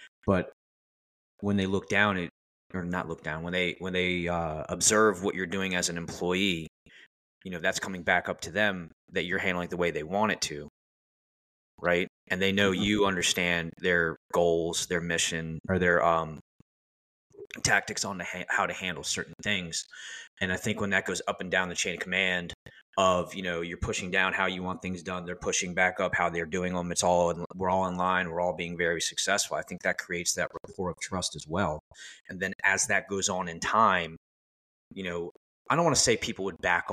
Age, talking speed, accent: 20-39, 215 wpm, American